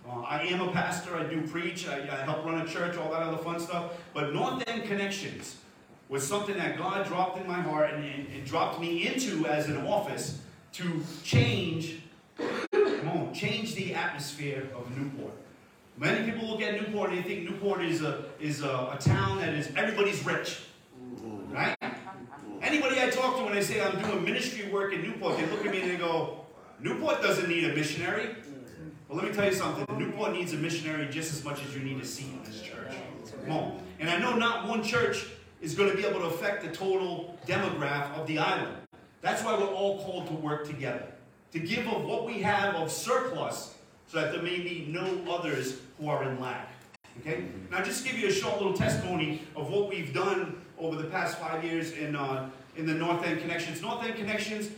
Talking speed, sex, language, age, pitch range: 205 wpm, male, English, 40-59, 150-195 Hz